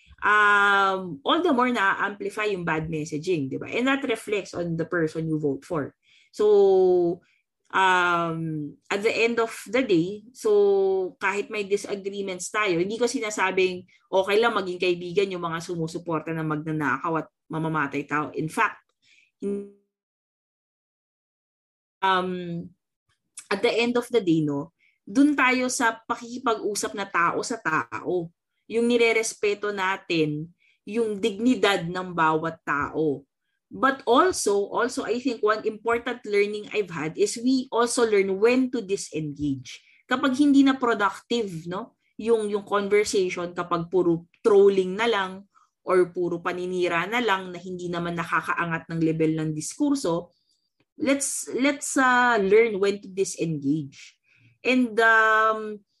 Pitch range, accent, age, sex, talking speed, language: 170-235 Hz, native, 20-39, female, 135 wpm, Filipino